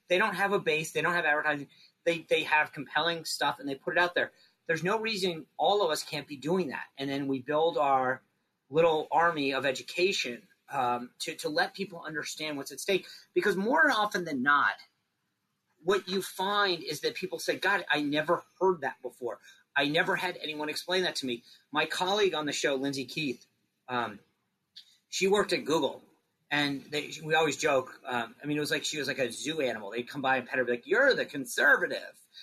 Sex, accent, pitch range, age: male, American, 145-185 Hz, 40-59